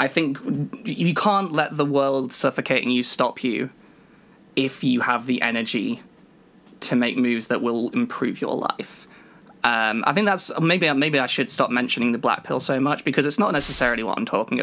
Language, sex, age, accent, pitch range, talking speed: English, male, 20-39, British, 125-165 Hz, 190 wpm